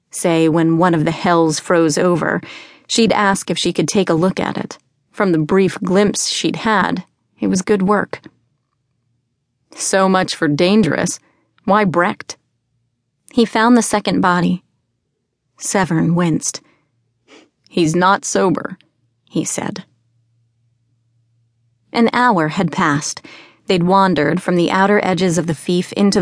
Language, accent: English, American